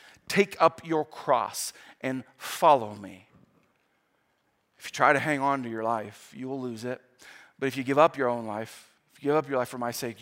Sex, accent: male, American